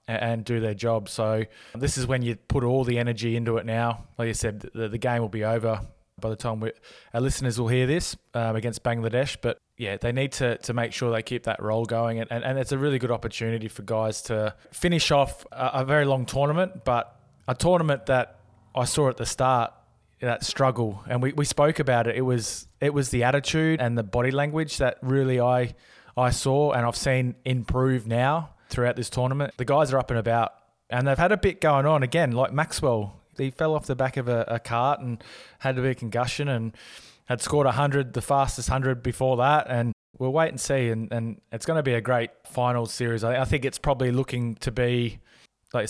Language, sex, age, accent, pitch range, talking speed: English, male, 20-39, Australian, 115-130 Hz, 220 wpm